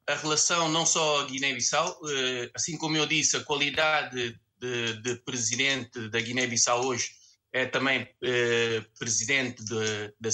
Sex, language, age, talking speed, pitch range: male, Portuguese, 20-39, 135 wpm, 120-145 Hz